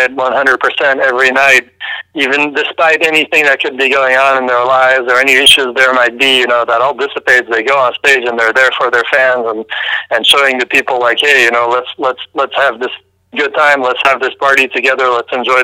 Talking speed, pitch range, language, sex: 225 wpm, 125-140 Hz, English, male